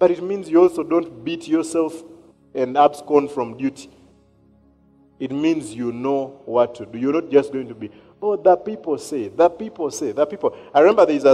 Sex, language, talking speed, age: male, English, 195 wpm, 40-59